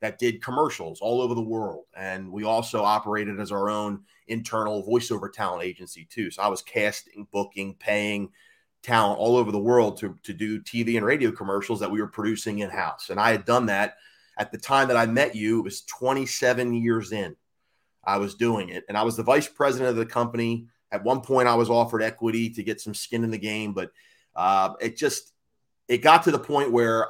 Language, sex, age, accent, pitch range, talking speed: English, male, 30-49, American, 105-125 Hz, 215 wpm